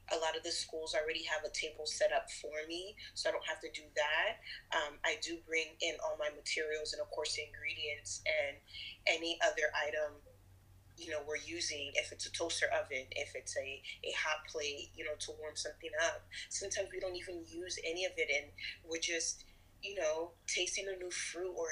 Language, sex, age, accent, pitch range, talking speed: English, female, 30-49, American, 150-185 Hz, 210 wpm